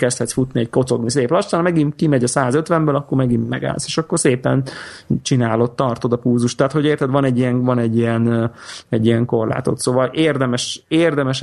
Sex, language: male, Hungarian